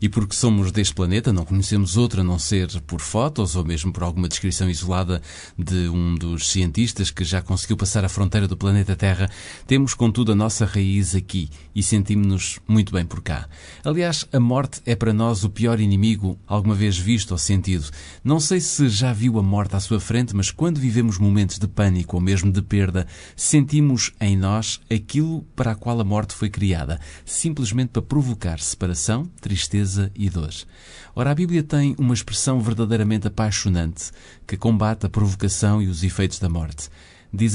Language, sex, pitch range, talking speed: Portuguese, male, 90-115 Hz, 180 wpm